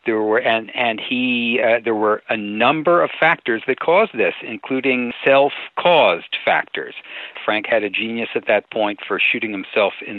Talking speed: 170 wpm